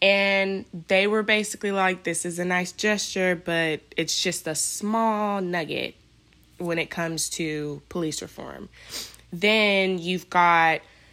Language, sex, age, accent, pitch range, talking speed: English, female, 20-39, American, 155-195 Hz, 135 wpm